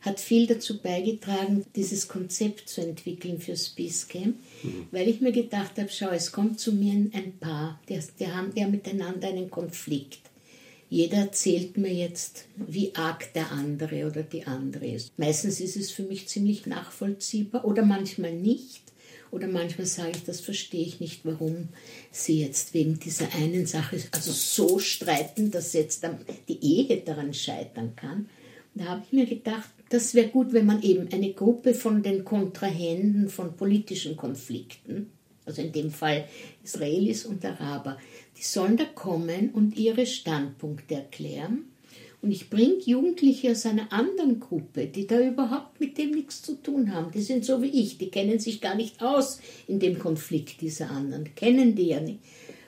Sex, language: female, German